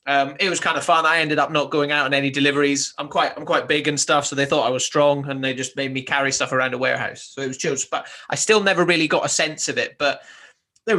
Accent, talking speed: British, 295 wpm